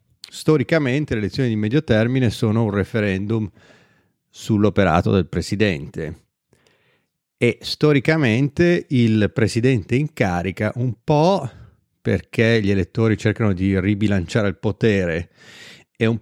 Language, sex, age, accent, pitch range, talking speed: Italian, male, 30-49, native, 100-125 Hz, 110 wpm